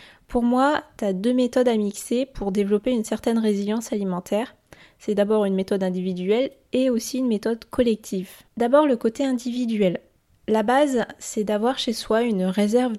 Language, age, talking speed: French, 20-39, 165 wpm